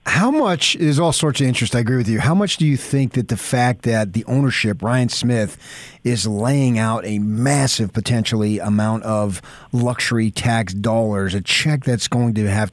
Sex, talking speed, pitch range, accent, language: male, 195 wpm, 105-125 Hz, American, English